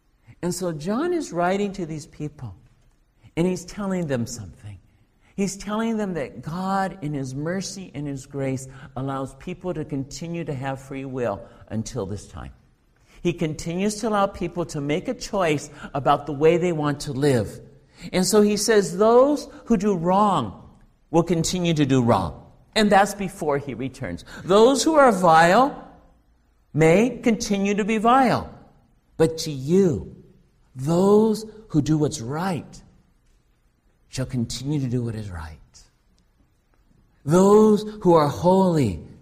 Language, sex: English, male